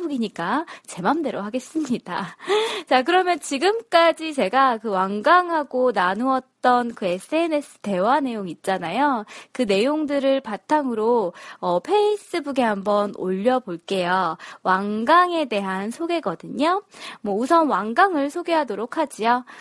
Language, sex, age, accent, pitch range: Korean, female, 20-39, native, 215-345 Hz